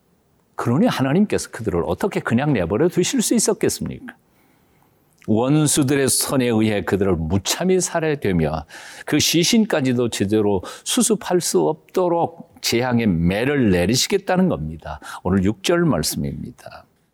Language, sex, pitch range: Korean, male, 95-160 Hz